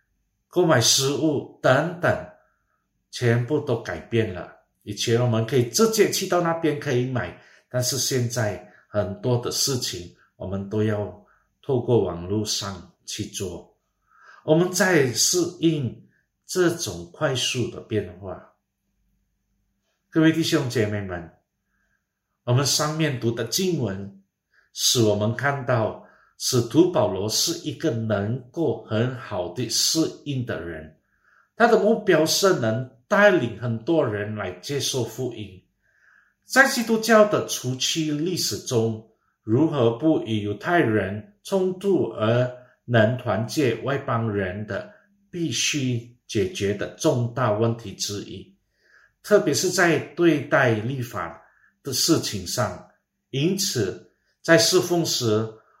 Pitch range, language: 105-160 Hz, Indonesian